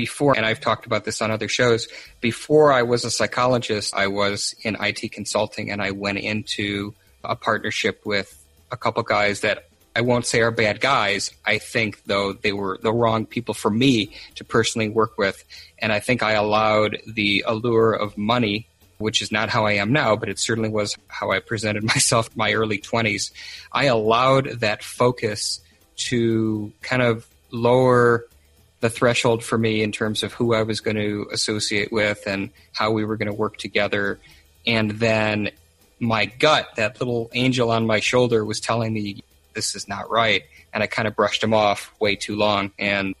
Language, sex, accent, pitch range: English, male, American, 105-115 Hz